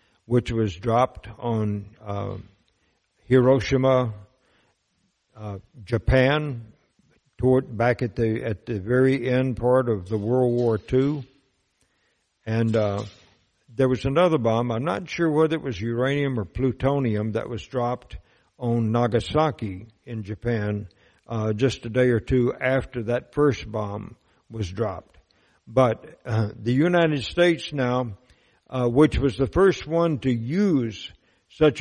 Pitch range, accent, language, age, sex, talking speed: 110-140 Hz, American, English, 60-79, male, 135 wpm